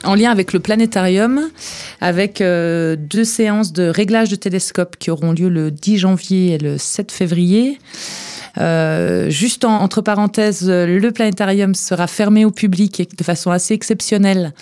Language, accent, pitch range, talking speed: French, French, 165-205 Hz, 160 wpm